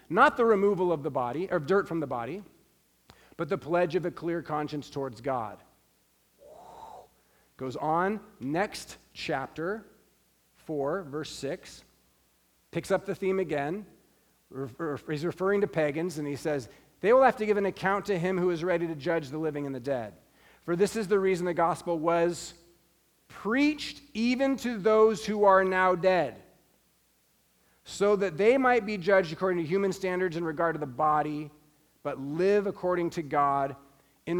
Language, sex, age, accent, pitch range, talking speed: English, male, 40-59, American, 155-210 Hz, 165 wpm